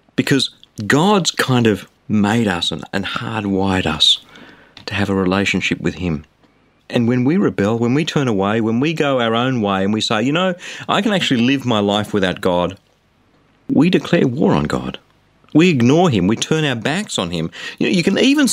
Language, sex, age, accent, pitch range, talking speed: English, male, 40-59, Australian, 105-150 Hz, 200 wpm